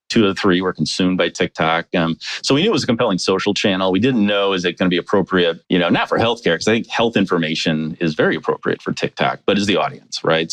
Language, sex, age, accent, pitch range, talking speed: English, male, 30-49, American, 80-100 Hz, 260 wpm